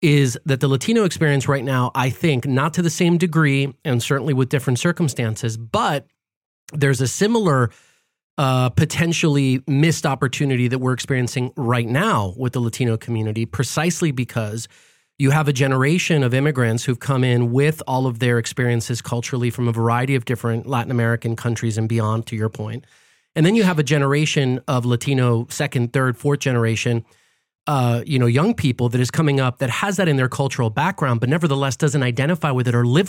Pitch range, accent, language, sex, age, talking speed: 120-155 Hz, American, English, male, 30-49, 185 wpm